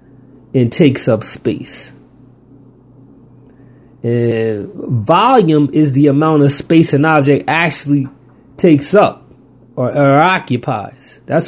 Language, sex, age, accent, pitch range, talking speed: English, male, 30-49, American, 125-145 Hz, 105 wpm